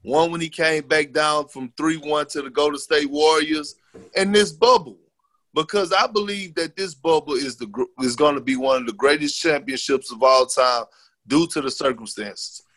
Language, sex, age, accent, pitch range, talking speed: English, male, 30-49, American, 135-195 Hz, 180 wpm